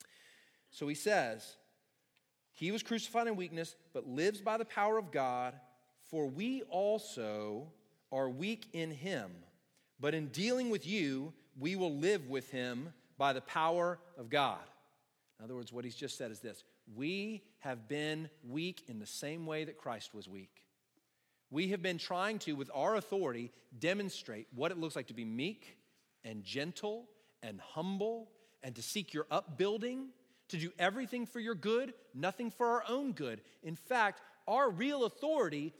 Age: 40-59